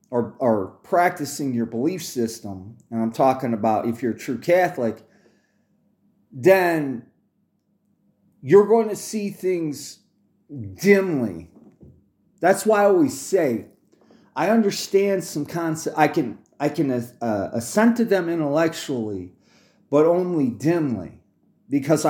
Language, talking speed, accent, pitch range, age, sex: English, 120 wpm, American, 130-200 Hz, 40-59, male